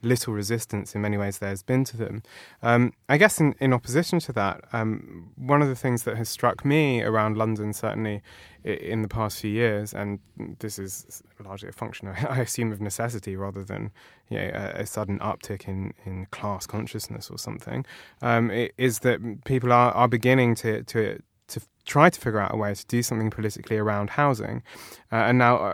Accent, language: British, English